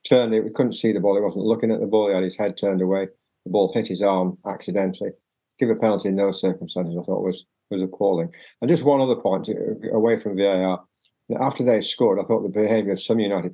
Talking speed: 240 wpm